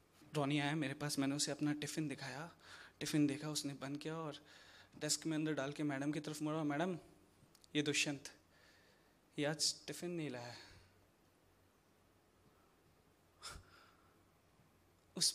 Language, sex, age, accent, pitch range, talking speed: Hindi, male, 20-39, native, 150-195 Hz, 120 wpm